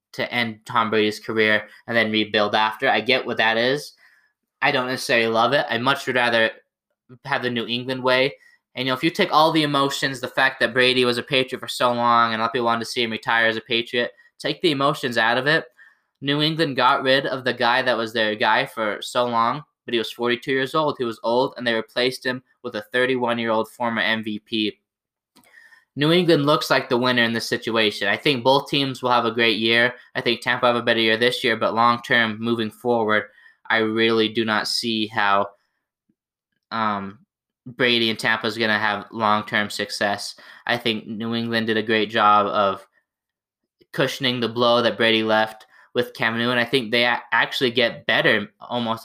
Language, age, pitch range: English, 10-29, 110-125 Hz